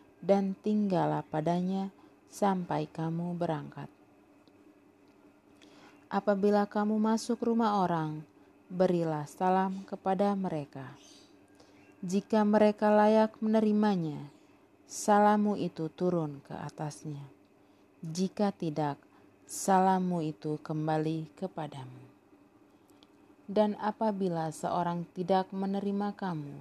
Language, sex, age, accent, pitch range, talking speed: Indonesian, female, 30-49, native, 155-205 Hz, 80 wpm